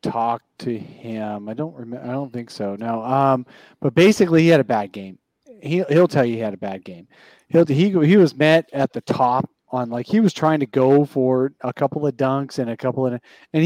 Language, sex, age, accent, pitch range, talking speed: English, male, 30-49, American, 125-155 Hz, 235 wpm